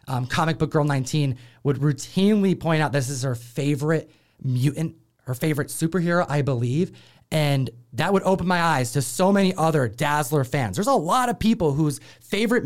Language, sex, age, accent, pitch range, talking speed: English, male, 30-49, American, 120-165 Hz, 180 wpm